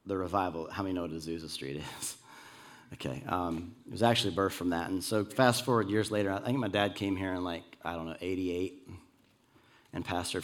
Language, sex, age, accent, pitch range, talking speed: English, male, 30-49, American, 95-125 Hz, 215 wpm